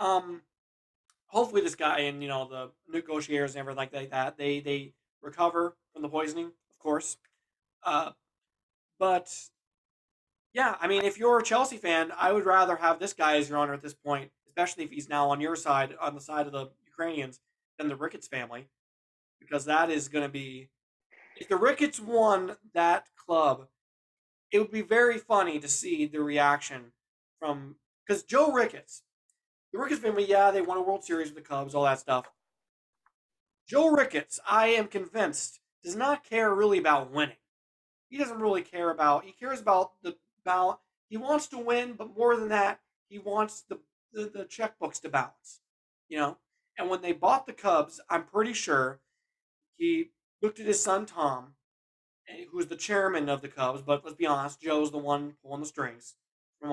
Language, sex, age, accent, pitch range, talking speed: English, male, 20-39, American, 145-215 Hz, 180 wpm